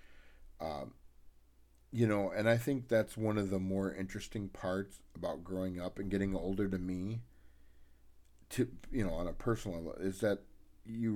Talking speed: 165 wpm